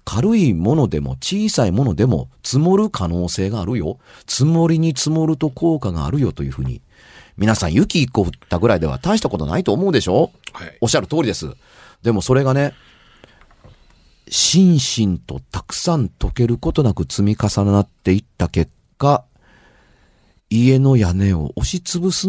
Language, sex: Japanese, male